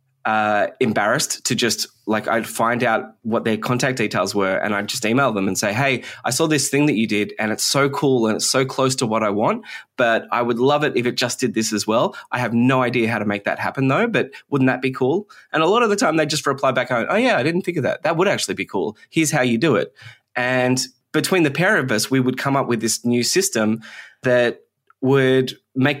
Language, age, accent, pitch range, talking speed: English, 20-39, Australian, 110-140 Hz, 255 wpm